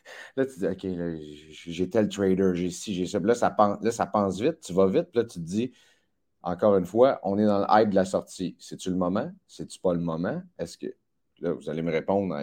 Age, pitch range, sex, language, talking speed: 30-49, 90-125 Hz, male, French, 255 wpm